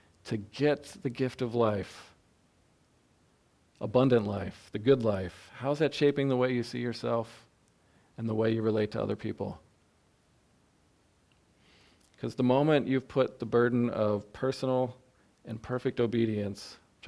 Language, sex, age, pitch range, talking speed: English, male, 40-59, 110-135 Hz, 140 wpm